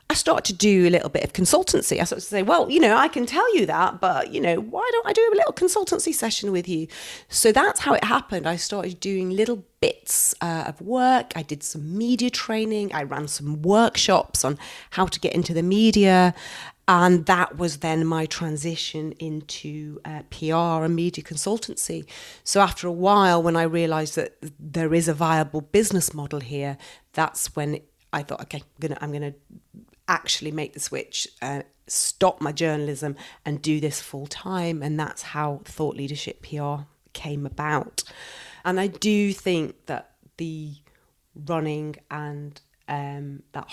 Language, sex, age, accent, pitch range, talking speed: English, female, 30-49, British, 150-190 Hz, 180 wpm